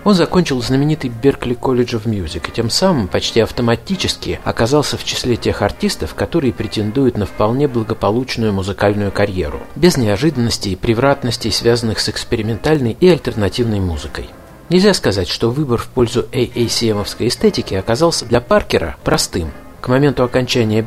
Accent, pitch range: native, 105-140 Hz